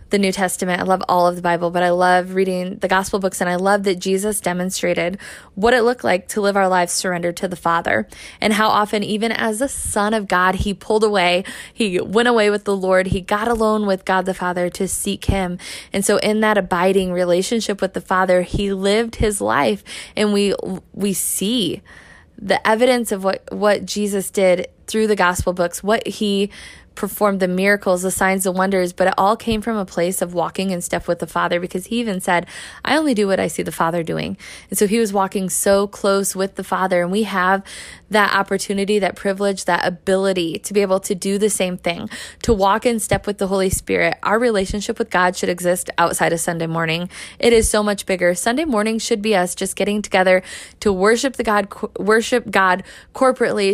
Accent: American